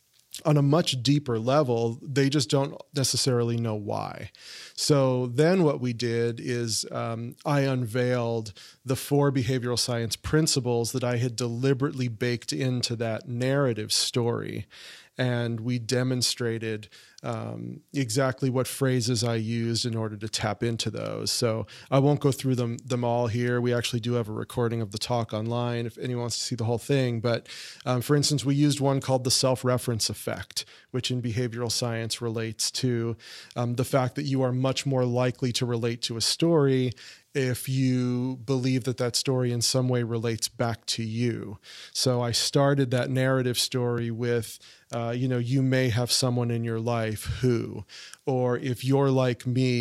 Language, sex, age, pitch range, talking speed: English, male, 30-49, 115-130 Hz, 170 wpm